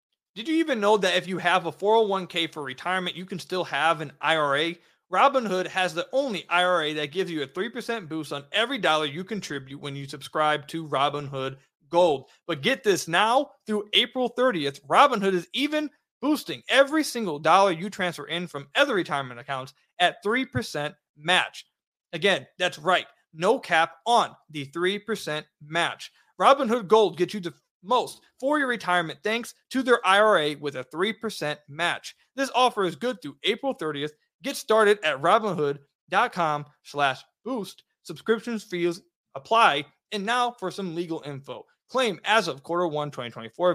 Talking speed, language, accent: 160 wpm, English, American